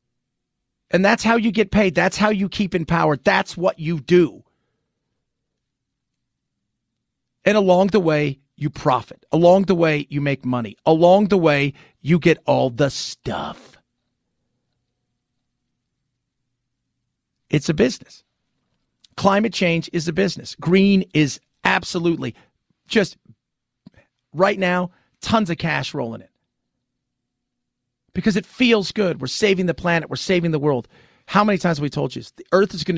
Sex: male